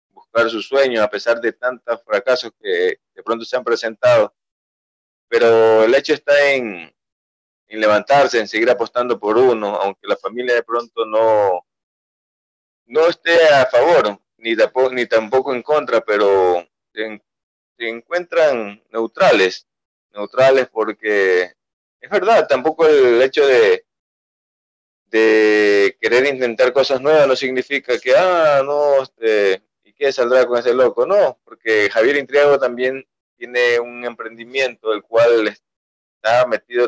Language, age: Spanish, 30-49